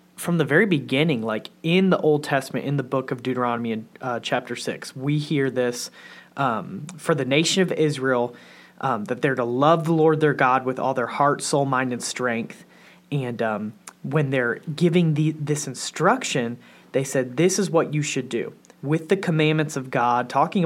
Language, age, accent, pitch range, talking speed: English, 30-49, American, 130-170 Hz, 190 wpm